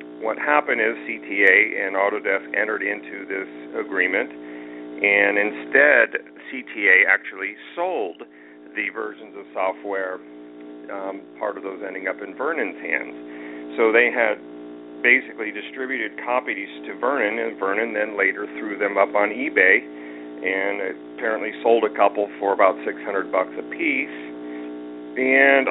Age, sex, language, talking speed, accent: 50-69, male, English, 135 wpm, American